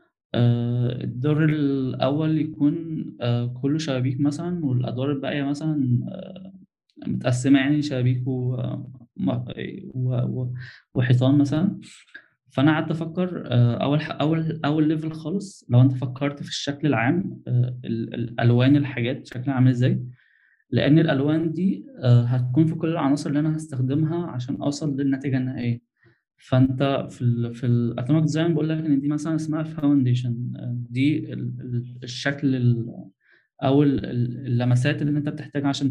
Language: Arabic